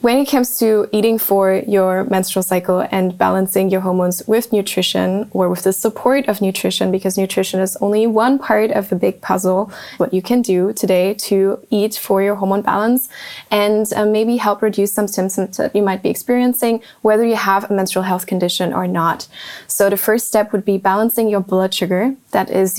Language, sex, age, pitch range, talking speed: English, female, 20-39, 190-215 Hz, 195 wpm